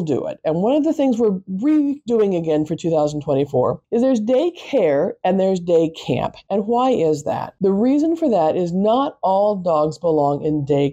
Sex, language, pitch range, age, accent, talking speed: female, English, 160-235 Hz, 50-69, American, 185 wpm